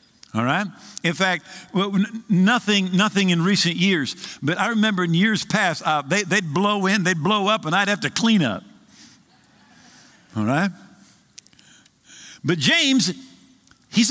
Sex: male